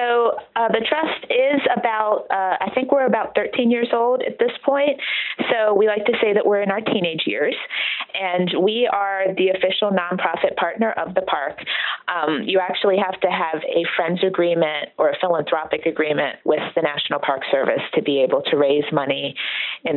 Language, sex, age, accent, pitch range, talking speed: English, female, 30-49, American, 160-230 Hz, 185 wpm